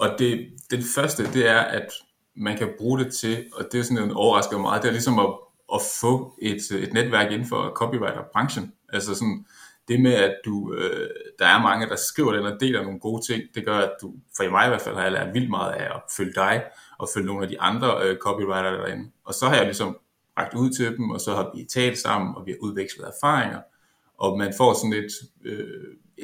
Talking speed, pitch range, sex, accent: 235 wpm, 100-125 Hz, male, native